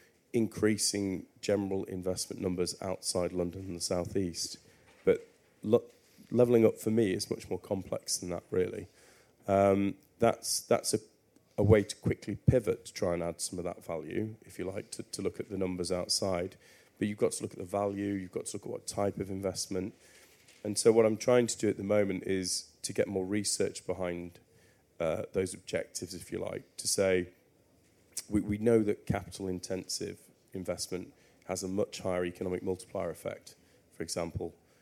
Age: 30-49